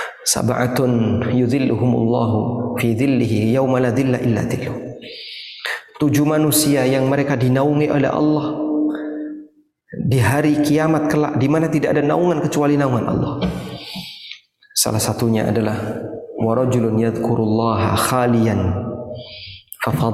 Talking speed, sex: 70 wpm, male